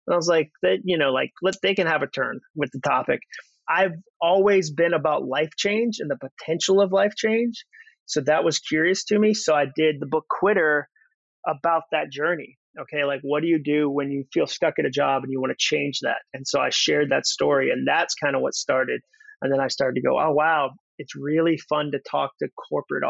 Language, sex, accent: English, male, American